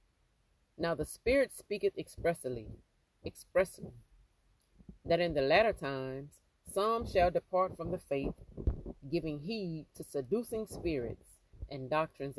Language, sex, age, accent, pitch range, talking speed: English, female, 30-49, American, 115-180 Hz, 115 wpm